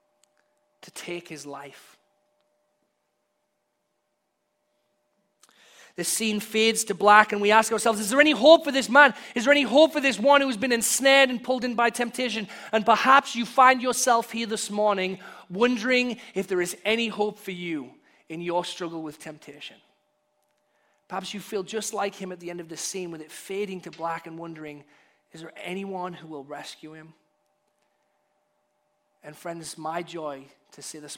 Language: English